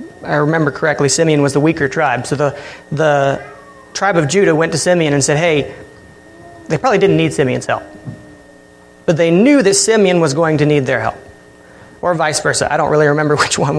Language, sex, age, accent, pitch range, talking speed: English, male, 30-49, American, 120-165 Hz, 200 wpm